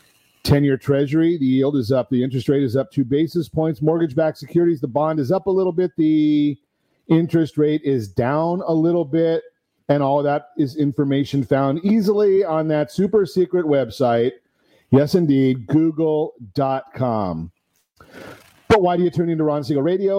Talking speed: 165 wpm